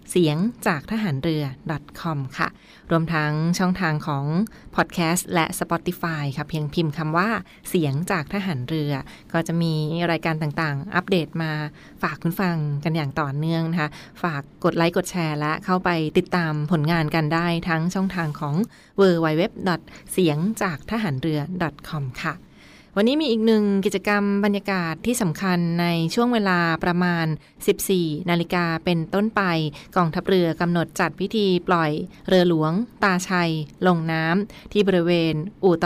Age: 20-39